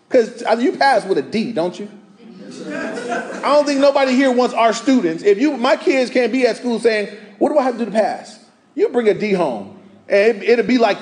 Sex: male